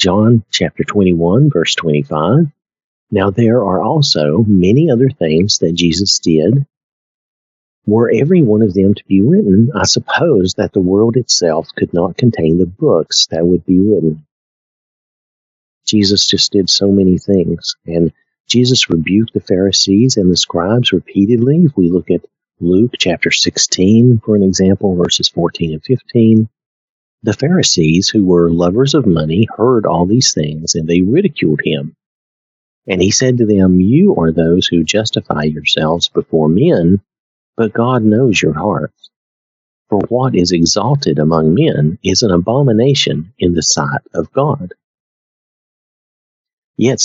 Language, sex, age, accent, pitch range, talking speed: English, male, 50-69, American, 85-115 Hz, 145 wpm